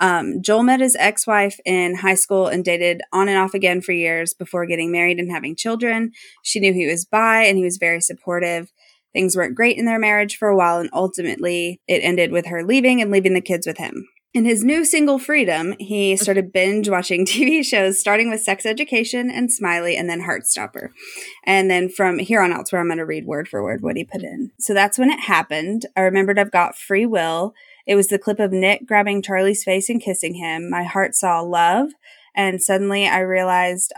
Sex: female